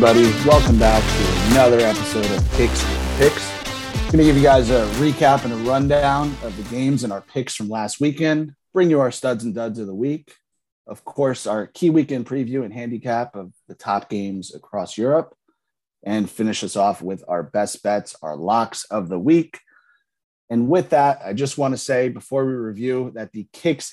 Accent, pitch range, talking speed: American, 115-145 Hz, 200 wpm